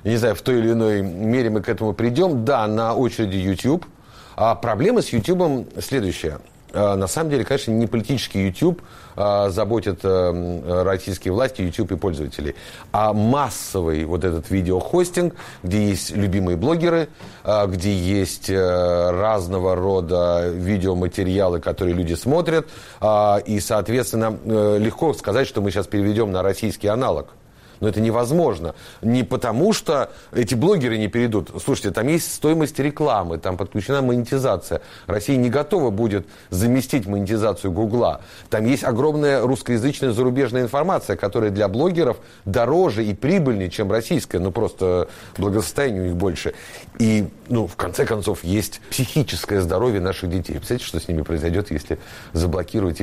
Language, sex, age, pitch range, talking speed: Russian, male, 30-49, 95-120 Hz, 145 wpm